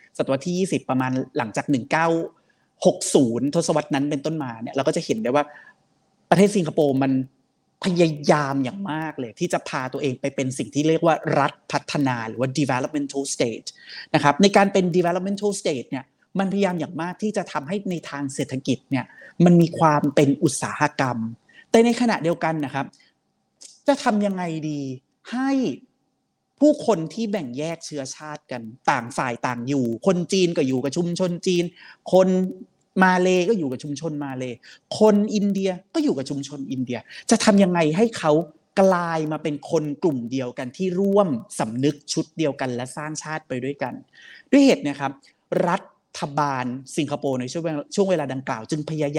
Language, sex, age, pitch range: Thai, male, 30-49, 140-185 Hz